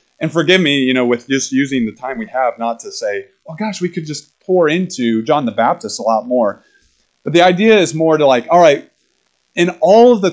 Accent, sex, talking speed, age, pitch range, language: American, male, 240 wpm, 30-49, 130-180 Hz, English